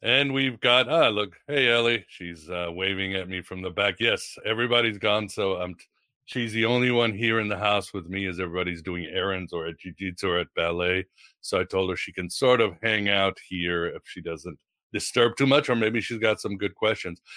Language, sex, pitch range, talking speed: English, male, 100-125 Hz, 220 wpm